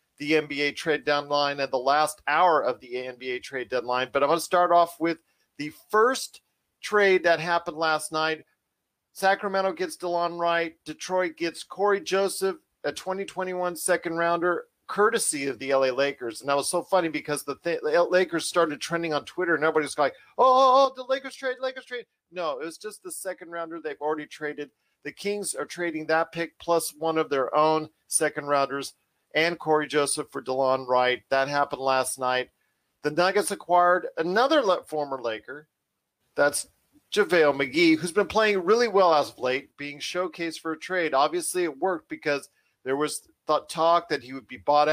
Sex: male